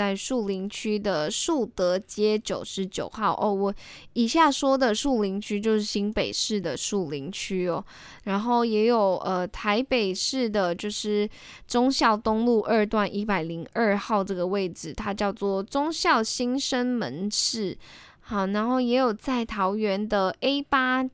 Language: Chinese